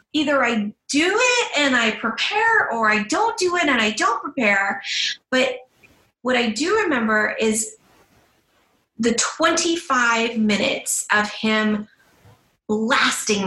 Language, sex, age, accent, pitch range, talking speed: English, female, 30-49, American, 220-285 Hz, 125 wpm